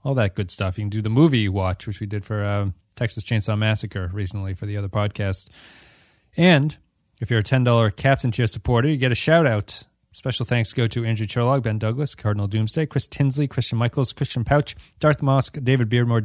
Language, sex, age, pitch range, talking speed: English, male, 30-49, 110-140 Hz, 205 wpm